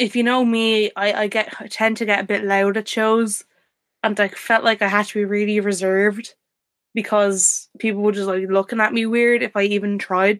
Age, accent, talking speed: 10-29, Irish, 220 wpm